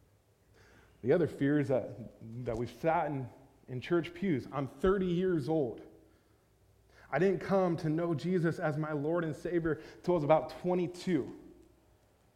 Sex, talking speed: male, 155 wpm